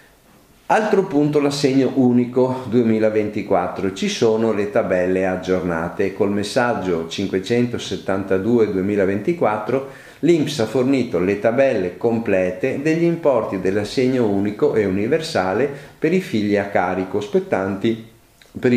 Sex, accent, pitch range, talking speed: male, native, 95-130 Hz, 105 wpm